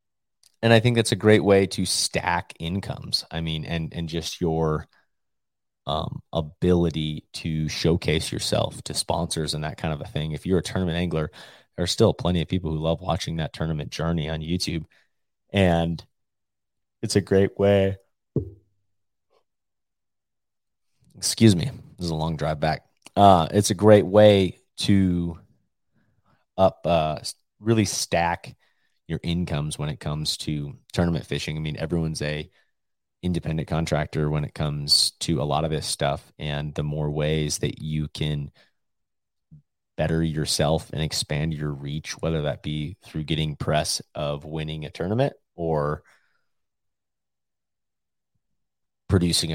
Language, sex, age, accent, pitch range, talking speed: English, male, 30-49, American, 75-95 Hz, 145 wpm